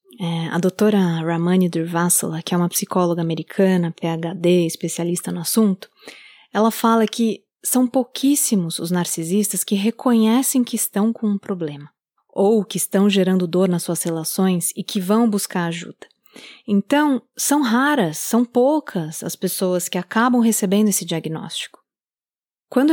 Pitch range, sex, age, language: 180-235 Hz, female, 20-39, Portuguese